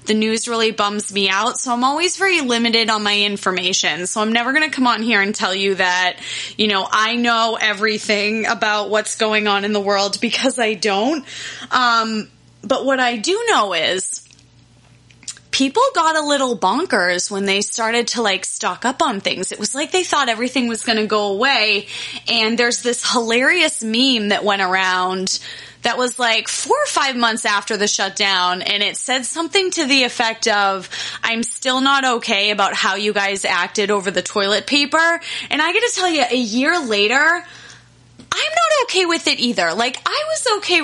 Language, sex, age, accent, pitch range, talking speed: English, female, 20-39, American, 205-270 Hz, 190 wpm